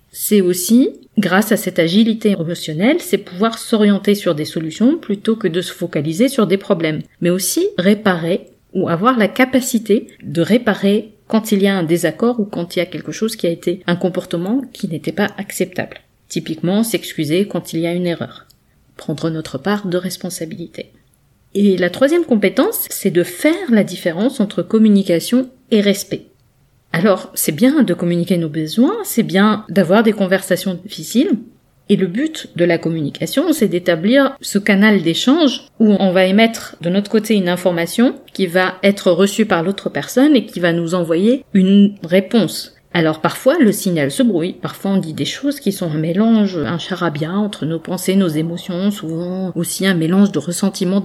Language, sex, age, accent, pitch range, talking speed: French, female, 40-59, French, 175-220 Hz, 180 wpm